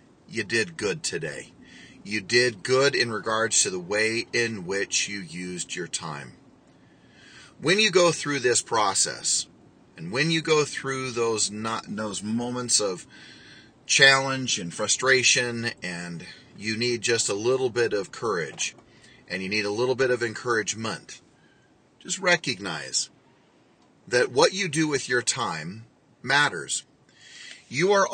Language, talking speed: English, 140 wpm